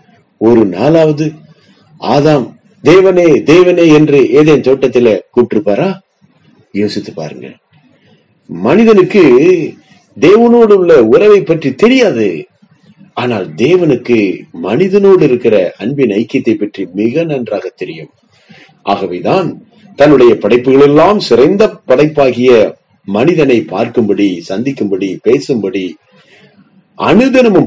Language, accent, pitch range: Tamil, native, 120-195 Hz